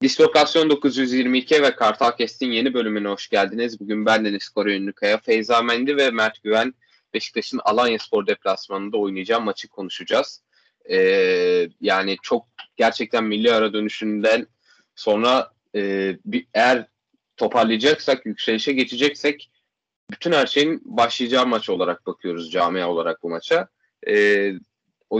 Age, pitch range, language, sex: 20-39, 105-130 Hz, Turkish, male